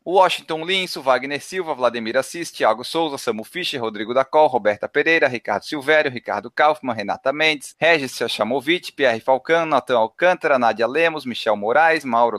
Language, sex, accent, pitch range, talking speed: Portuguese, male, Brazilian, 135-180 Hz, 155 wpm